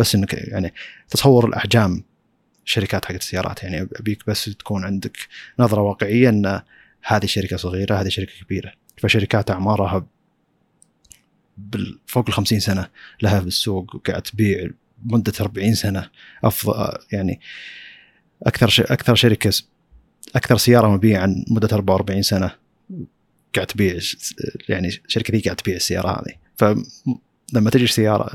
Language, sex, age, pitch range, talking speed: Arabic, male, 30-49, 95-110 Hz, 135 wpm